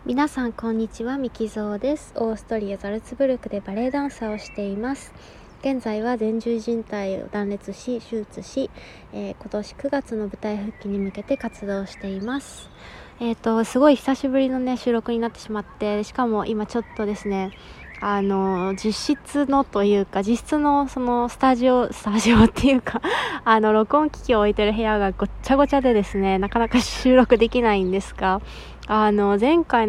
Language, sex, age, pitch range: Japanese, female, 20-39, 205-245 Hz